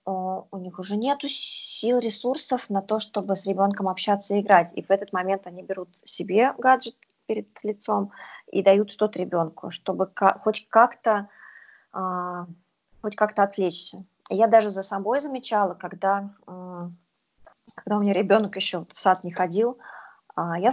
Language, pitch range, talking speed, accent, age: Russian, 190-230 Hz, 145 wpm, native, 20-39